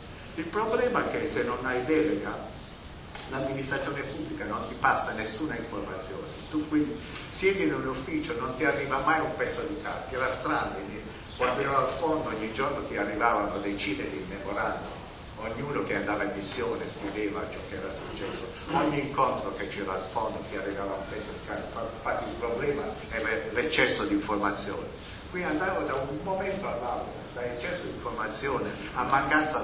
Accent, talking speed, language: native, 170 wpm, Italian